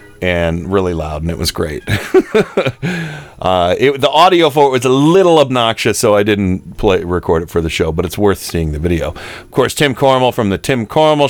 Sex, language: male, English